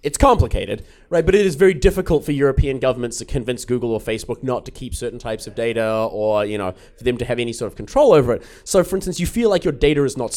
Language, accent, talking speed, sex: English, Australian, 265 wpm, male